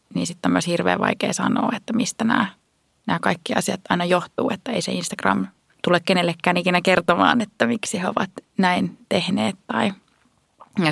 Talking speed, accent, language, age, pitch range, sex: 170 wpm, native, Finnish, 20-39, 180-235 Hz, female